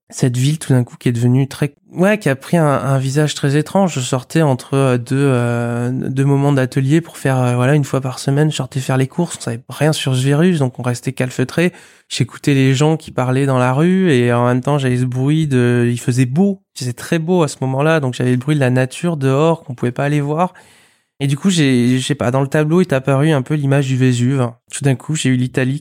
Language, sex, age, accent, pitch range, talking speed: French, male, 20-39, French, 125-150 Hz, 255 wpm